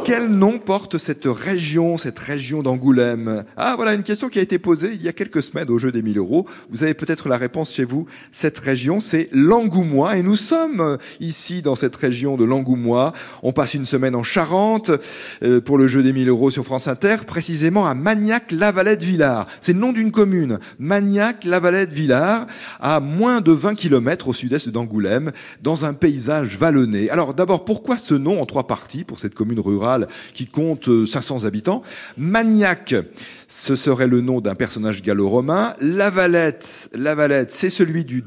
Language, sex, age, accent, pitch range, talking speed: French, male, 40-59, French, 120-180 Hz, 180 wpm